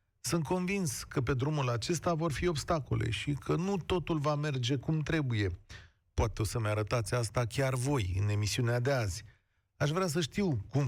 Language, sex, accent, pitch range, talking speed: Romanian, male, native, 105-150 Hz, 180 wpm